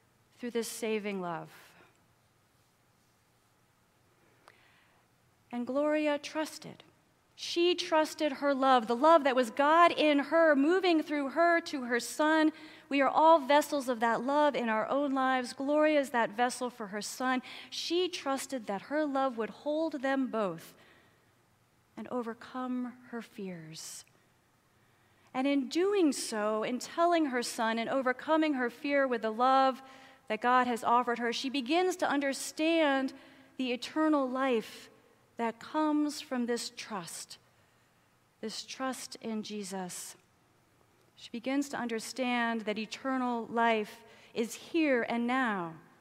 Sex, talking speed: female, 130 wpm